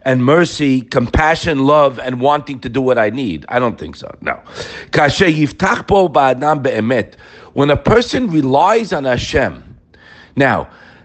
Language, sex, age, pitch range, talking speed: English, male, 50-69, 145-210 Hz, 125 wpm